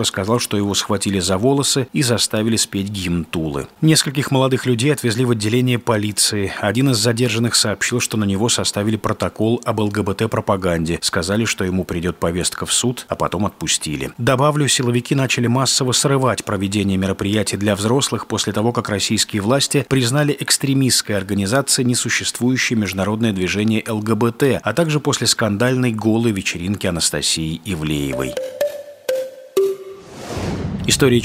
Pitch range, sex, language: 105-130 Hz, male, Russian